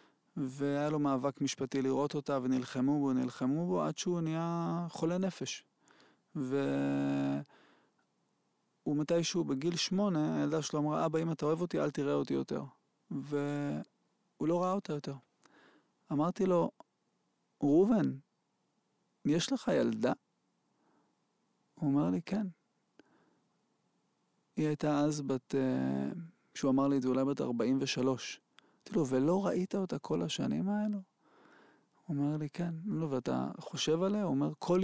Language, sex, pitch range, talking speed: Hebrew, male, 130-170 Hz, 135 wpm